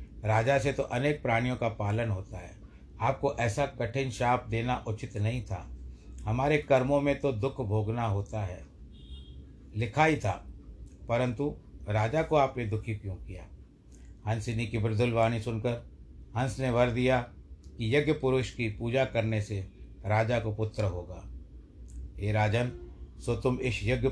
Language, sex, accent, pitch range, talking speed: Hindi, male, native, 100-130 Hz, 150 wpm